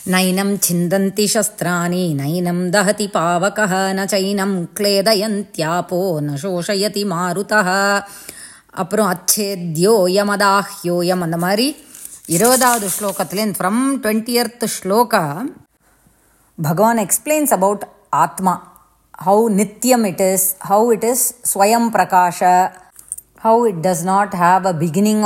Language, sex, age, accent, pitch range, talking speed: English, female, 20-39, Indian, 185-245 Hz, 60 wpm